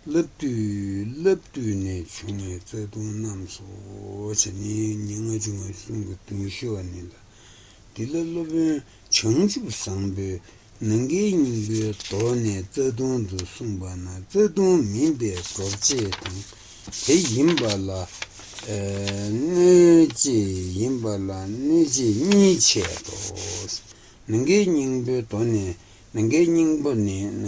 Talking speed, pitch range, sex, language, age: 45 wpm, 100-125 Hz, male, Italian, 60-79